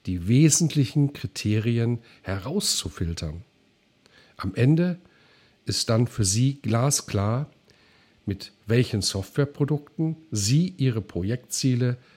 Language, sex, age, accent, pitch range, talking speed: German, male, 50-69, German, 100-145 Hz, 85 wpm